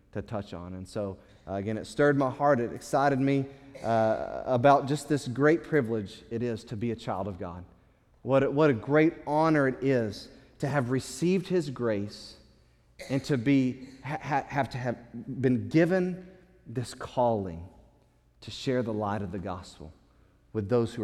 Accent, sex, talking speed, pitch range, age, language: American, male, 180 wpm, 105-140 Hz, 30-49, English